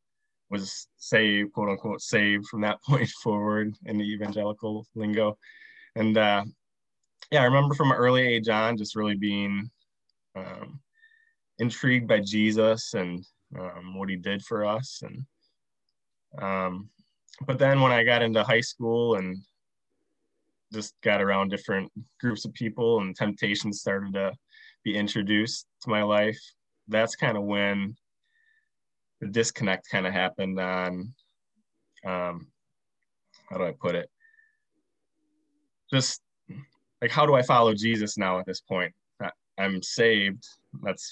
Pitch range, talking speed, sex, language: 100-125 Hz, 140 wpm, male, English